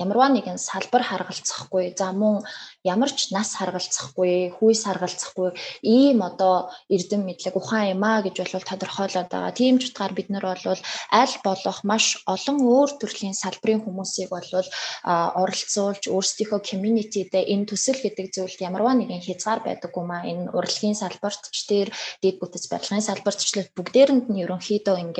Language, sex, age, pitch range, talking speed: English, female, 20-39, 185-225 Hz, 130 wpm